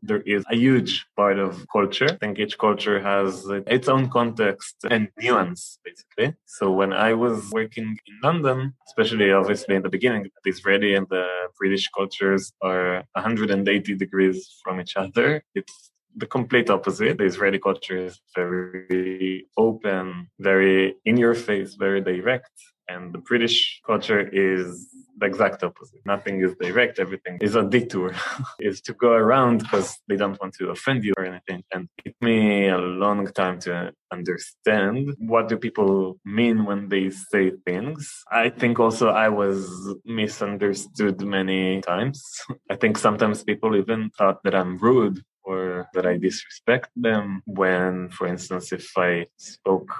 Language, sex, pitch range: English, male, 95-115 Hz